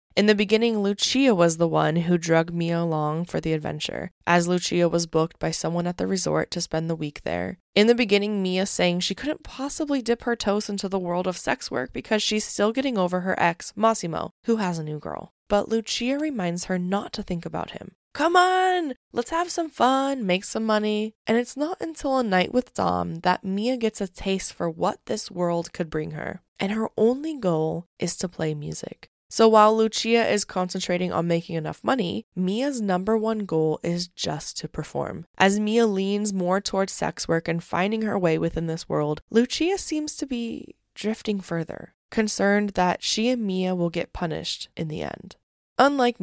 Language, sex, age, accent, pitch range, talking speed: English, female, 20-39, American, 170-225 Hz, 200 wpm